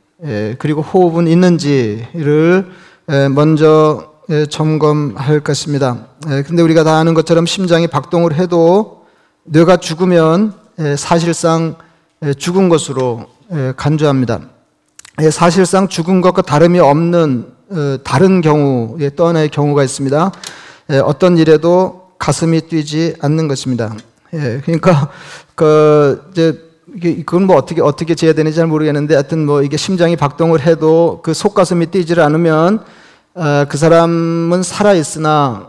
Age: 40-59